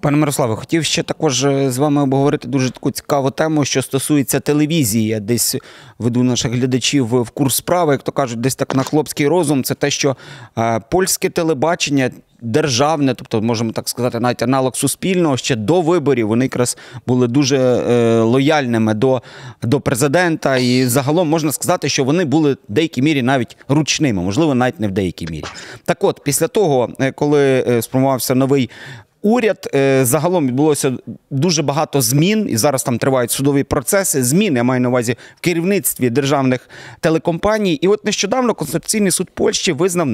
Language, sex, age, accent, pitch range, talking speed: Ukrainian, male, 30-49, native, 125-160 Hz, 160 wpm